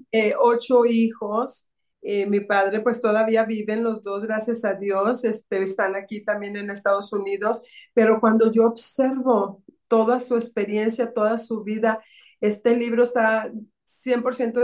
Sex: female